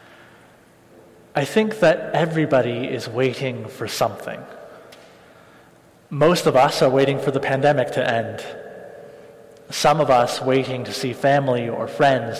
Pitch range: 125-155 Hz